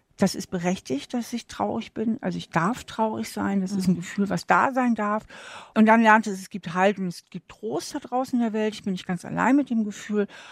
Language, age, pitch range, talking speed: German, 60-79, 175-215 Hz, 245 wpm